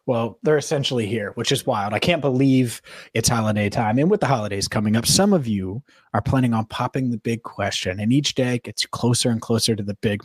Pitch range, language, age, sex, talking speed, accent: 115-155 Hz, English, 30-49, male, 230 wpm, American